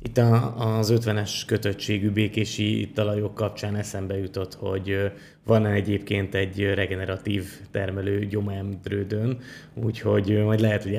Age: 20-39